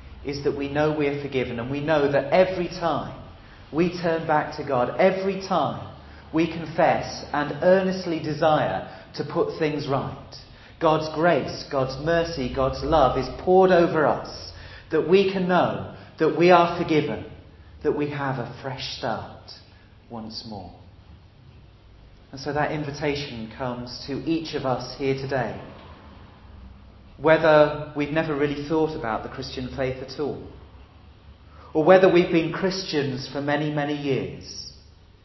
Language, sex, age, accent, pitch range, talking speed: English, male, 40-59, British, 100-145 Hz, 145 wpm